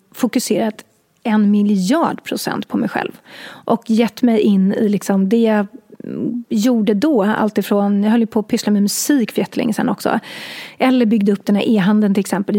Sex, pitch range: female, 205-240 Hz